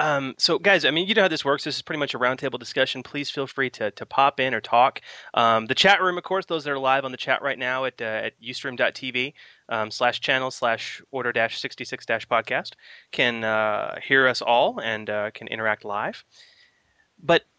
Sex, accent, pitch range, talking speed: male, American, 115-145 Hz, 200 wpm